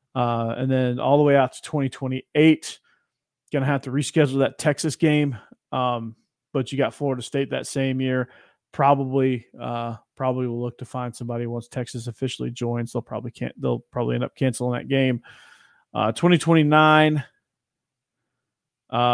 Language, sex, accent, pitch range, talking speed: English, male, American, 120-140 Hz, 155 wpm